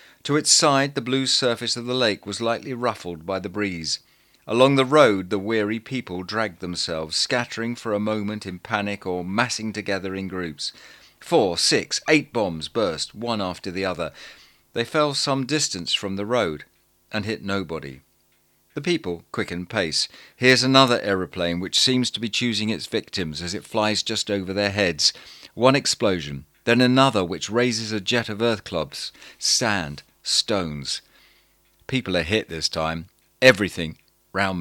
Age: 40-59